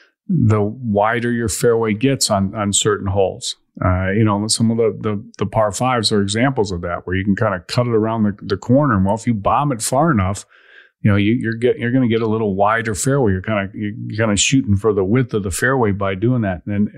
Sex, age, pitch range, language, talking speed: male, 40-59, 100-115 Hz, English, 255 wpm